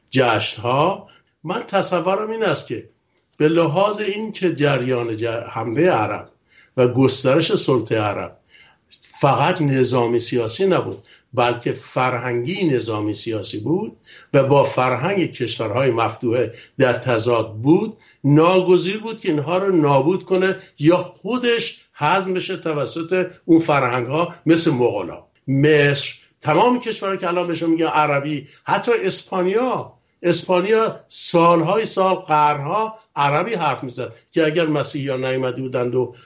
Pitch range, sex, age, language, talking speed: 130-180 Hz, male, 60-79, Persian, 125 wpm